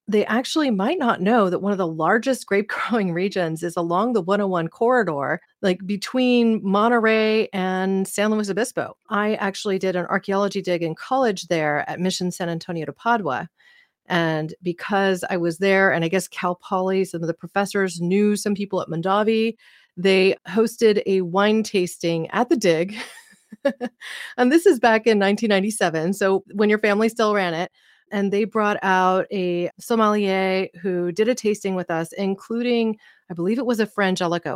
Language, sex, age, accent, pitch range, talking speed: English, female, 30-49, American, 175-220 Hz, 170 wpm